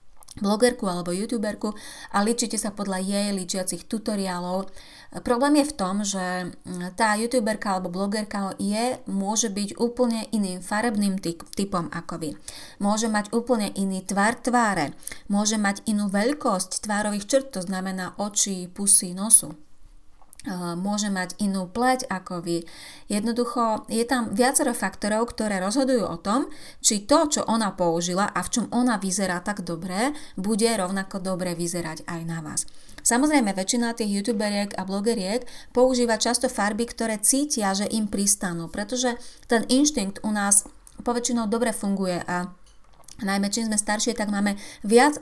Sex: female